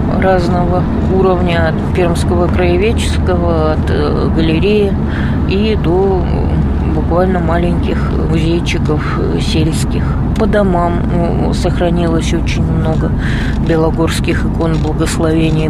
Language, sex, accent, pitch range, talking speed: Russian, female, native, 75-90 Hz, 85 wpm